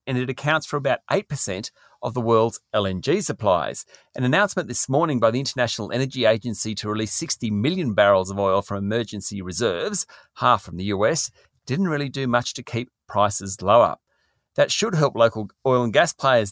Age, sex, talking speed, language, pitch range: 40-59, male, 180 wpm, English, 110-145 Hz